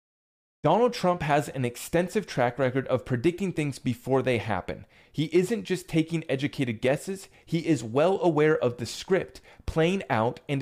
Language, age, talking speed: English, 30-49, 165 wpm